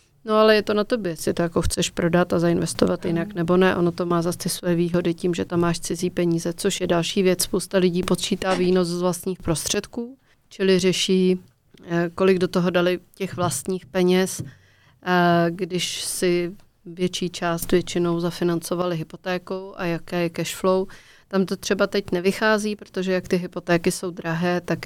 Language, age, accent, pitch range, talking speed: Czech, 30-49, native, 175-190 Hz, 170 wpm